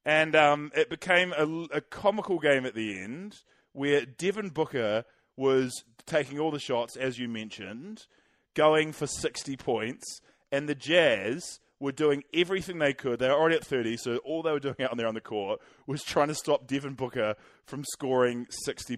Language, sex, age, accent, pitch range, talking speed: English, male, 20-39, Australian, 125-155 Hz, 185 wpm